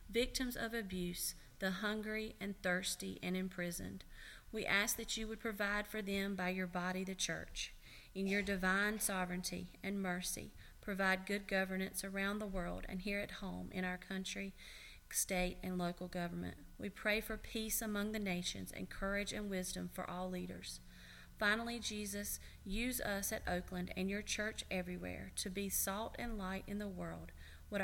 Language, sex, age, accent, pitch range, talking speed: English, female, 40-59, American, 175-205 Hz, 170 wpm